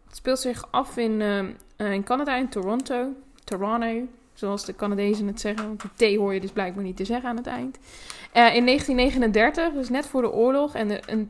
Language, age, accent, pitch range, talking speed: Dutch, 20-39, Dutch, 200-235 Hz, 210 wpm